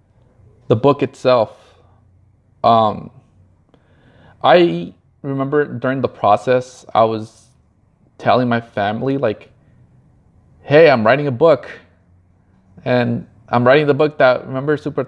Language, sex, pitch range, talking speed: English, male, 115-140 Hz, 110 wpm